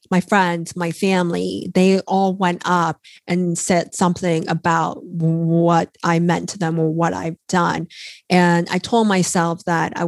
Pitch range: 170-190 Hz